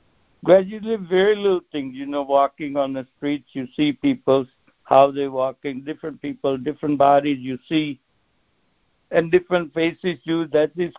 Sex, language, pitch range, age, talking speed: male, English, 135-170 Hz, 60-79, 160 wpm